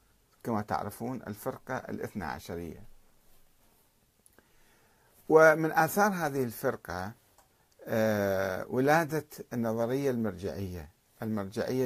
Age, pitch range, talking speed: 50-69, 105-135 Hz, 65 wpm